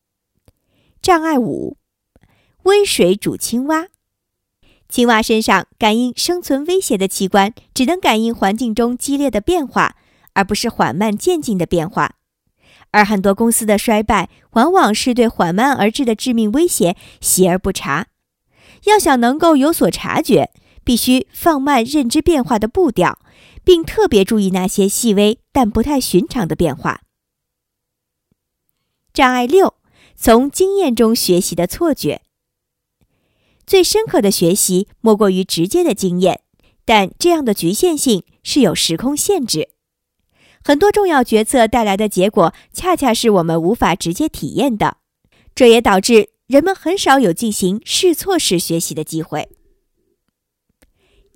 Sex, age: male, 50-69